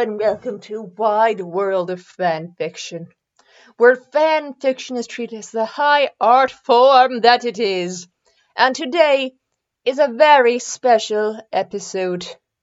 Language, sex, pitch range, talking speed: English, female, 215-280 Hz, 135 wpm